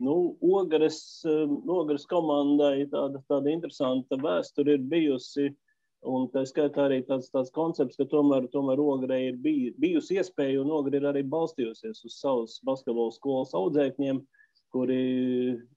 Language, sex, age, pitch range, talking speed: English, male, 30-49, 130-155 Hz, 135 wpm